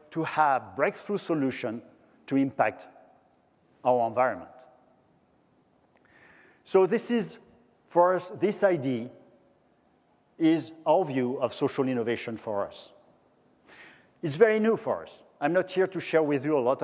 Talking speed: 130 wpm